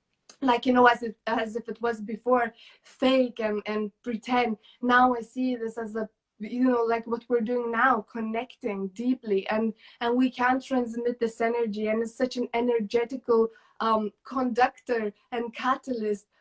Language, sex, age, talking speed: English, female, 20-39, 165 wpm